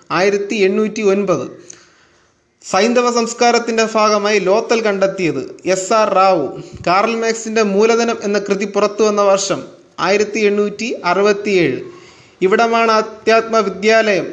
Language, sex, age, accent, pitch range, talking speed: Malayalam, male, 30-49, native, 195-225 Hz, 90 wpm